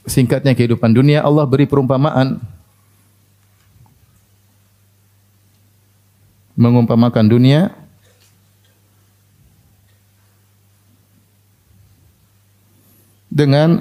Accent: native